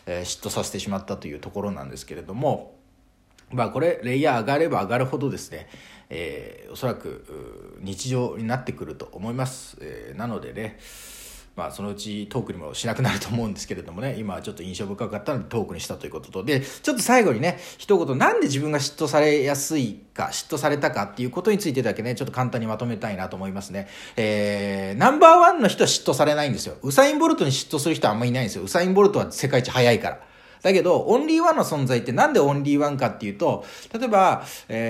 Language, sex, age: Japanese, male, 40-59